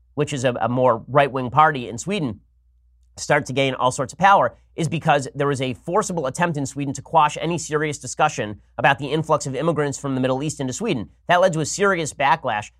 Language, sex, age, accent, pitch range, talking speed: English, male, 30-49, American, 130-165 Hz, 220 wpm